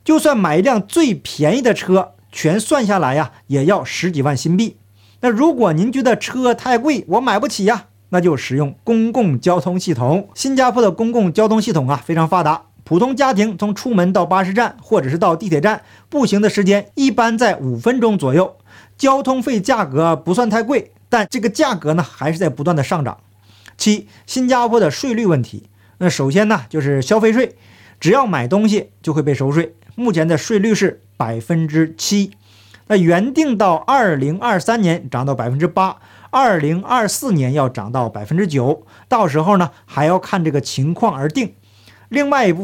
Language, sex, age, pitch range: Chinese, male, 50-69, 150-225 Hz